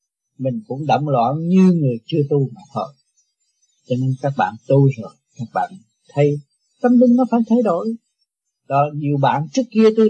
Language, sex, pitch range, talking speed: Vietnamese, male, 145-220 Hz, 180 wpm